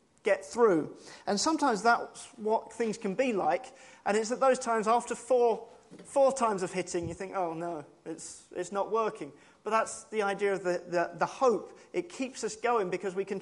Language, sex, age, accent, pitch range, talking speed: English, male, 30-49, British, 185-235 Hz, 200 wpm